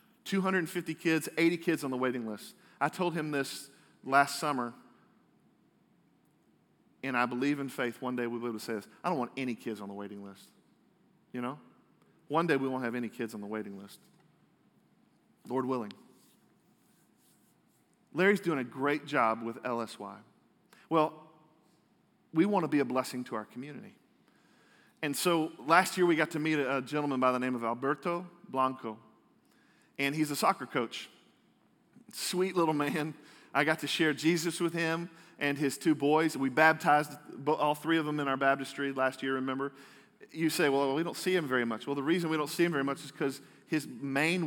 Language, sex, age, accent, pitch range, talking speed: English, male, 40-59, American, 130-165 Hz, 185 wpm